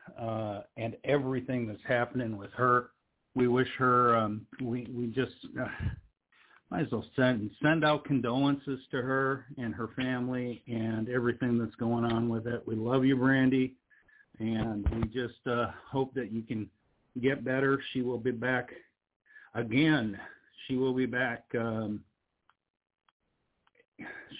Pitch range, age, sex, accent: 115-140 Hz, 50-69, male, American